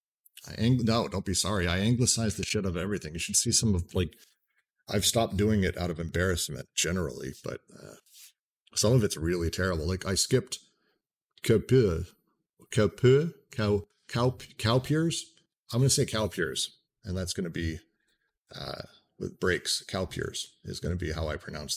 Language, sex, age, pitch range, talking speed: English, male, 50-69, 90-115 Hz, 165 wpm